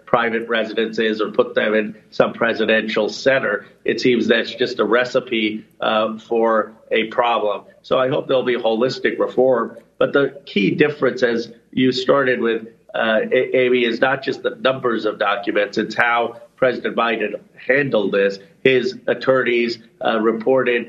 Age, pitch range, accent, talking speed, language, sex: 40-59, 110-125 Hz, American, 150 wpm, English, male